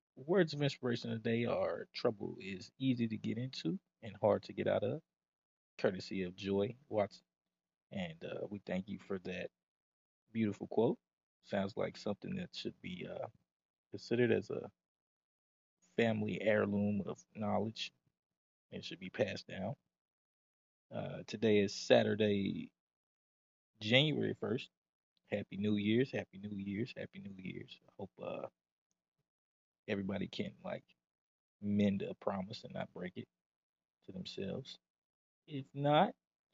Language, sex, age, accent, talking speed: English, male, 20-39, American, 135 wpm